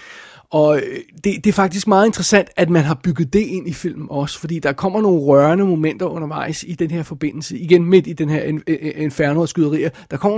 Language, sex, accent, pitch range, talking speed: Danish, male, native, 150-180 Hz, 210 wpm